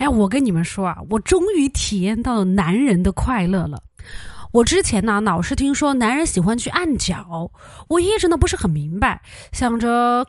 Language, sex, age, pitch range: Chinese, female, 20-39, 200-320 Hz